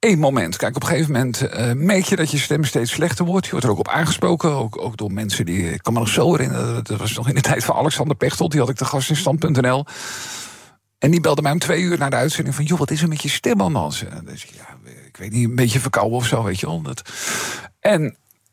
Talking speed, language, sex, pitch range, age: 280 wpm, Dutch, male, 125-175 Hz, 50-69